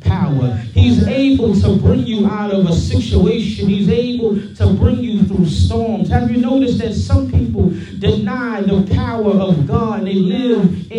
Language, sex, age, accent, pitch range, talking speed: English, male, 30-49, American, 135-215 Hz, 165 wpm